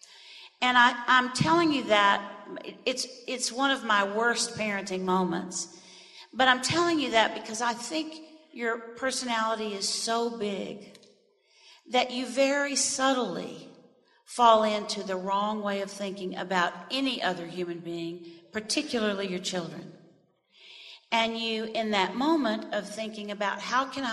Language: English